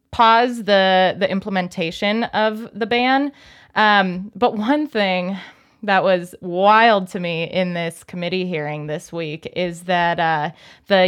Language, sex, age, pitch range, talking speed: English, female, 20-39, 180-215 Hz, 140 wpm